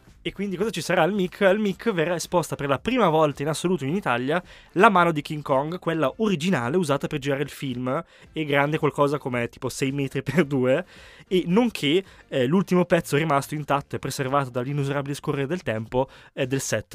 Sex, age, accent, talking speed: male, 20-39, native, 200 wpm